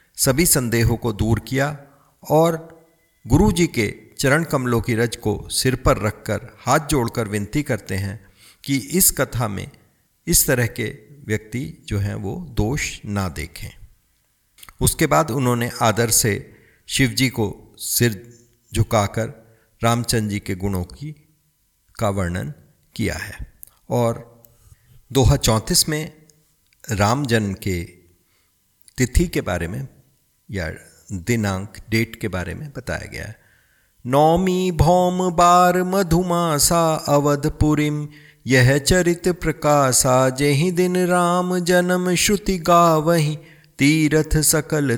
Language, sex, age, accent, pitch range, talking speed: Hindi, male, 50-69, native, 110-155 Hz, 120 wpm